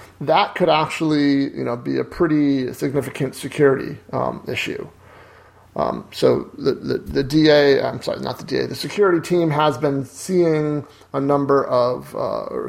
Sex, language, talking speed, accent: male, English, 155 wpm, American